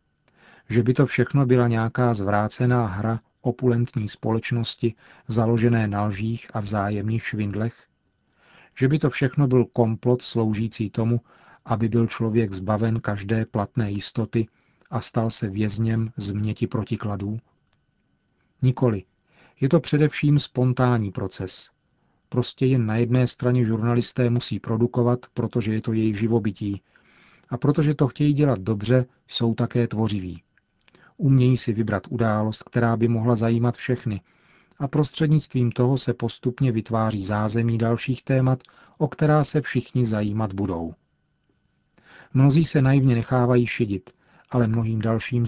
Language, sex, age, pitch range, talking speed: Czech, male, 40-59, 110-125 Hz, 130 wpm